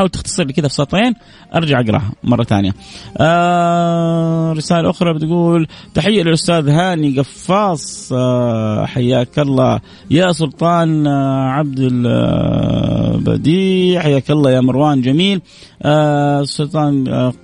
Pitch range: 120-170 Hz